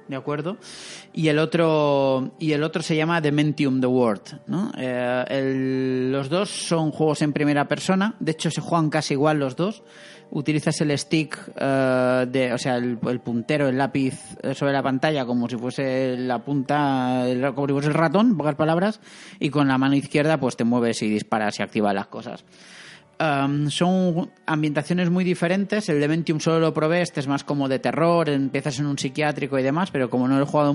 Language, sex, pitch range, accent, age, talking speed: Spanish, male, 130-160 Hz, Spanish, 30-49, 195 wpm